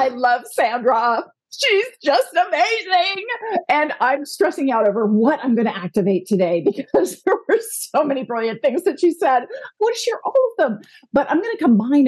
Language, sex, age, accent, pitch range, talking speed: English, female, 40-59, American, 200-290 Hz, 195 wpm